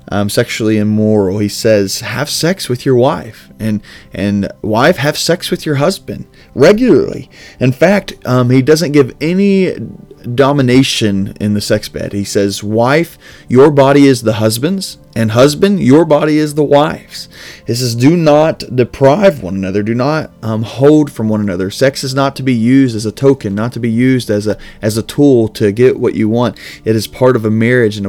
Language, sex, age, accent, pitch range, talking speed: English, male, 30-49, American, 105-130 Hz, 190 wpm